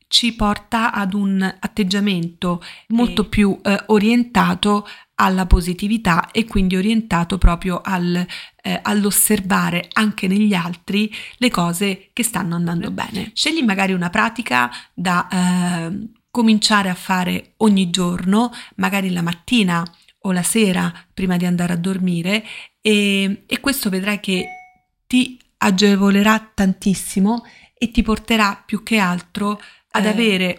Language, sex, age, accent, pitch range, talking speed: Italian, female, 30-49, native, 180-215 Hz, 125 wpm